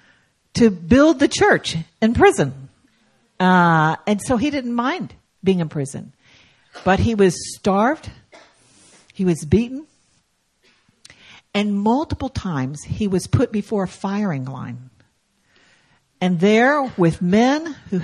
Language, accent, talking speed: English, American, 125 wpm